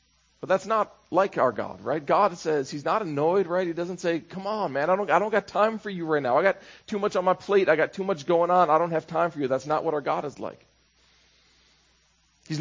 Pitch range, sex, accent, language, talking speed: 120-175 Hz, male, American, English, 260 wpm